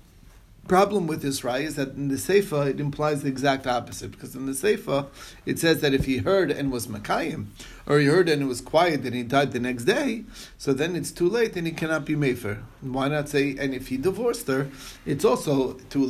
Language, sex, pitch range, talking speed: English, male, 125-150 Hz, 225 wpm